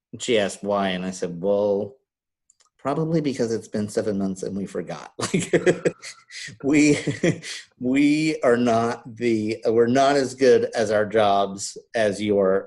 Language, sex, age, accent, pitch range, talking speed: English, male, 50-69, American, 100-125 Hz, 145 wpm